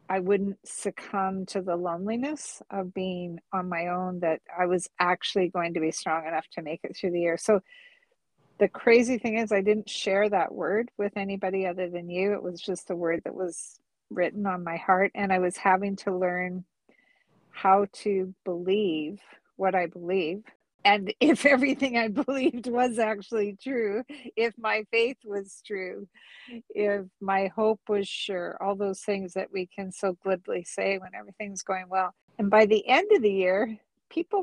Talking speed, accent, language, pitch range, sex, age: 180 wpm, American, English, 185-230 Hz, female, 50-69